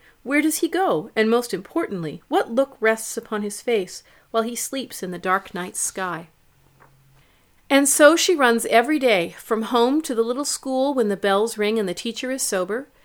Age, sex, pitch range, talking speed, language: 40-59, female, 200-265 Hz, 195 wpm, English